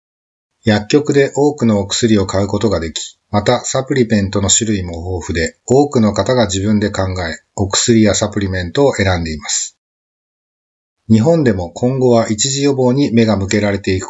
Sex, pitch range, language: male, 95-120 Hz, Japanese